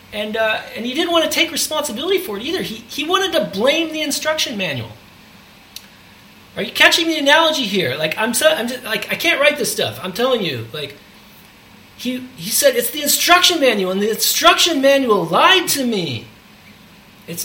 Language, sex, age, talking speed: English, male, 30-49, 195 wpm